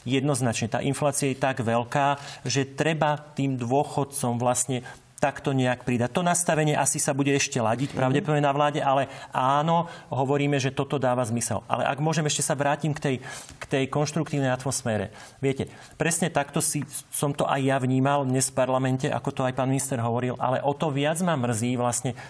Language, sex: Slovak, male